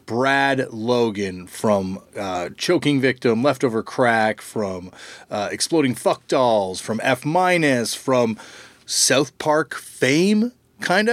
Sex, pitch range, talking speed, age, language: male, 105-160 Hz, 110 wpm, 30-49, English